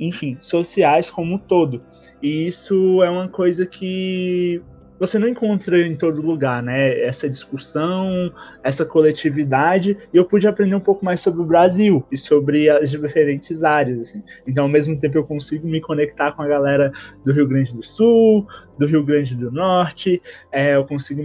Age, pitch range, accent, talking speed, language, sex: 20-39, 145-180 Hz, Brazilian, 170 wpm, Portuguese, male